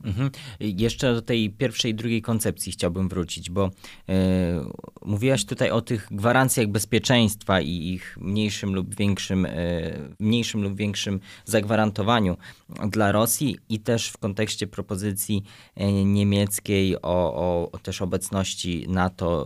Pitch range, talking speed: 95-115 Hz, 135 wpm